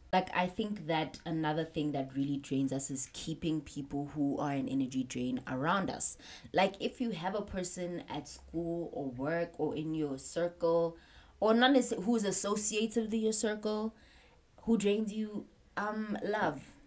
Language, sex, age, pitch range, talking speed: English, female, 20-39, 150-195 Hz, 170 wpm